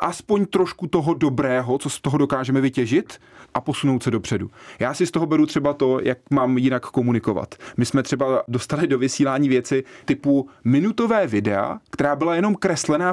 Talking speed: 175 wpm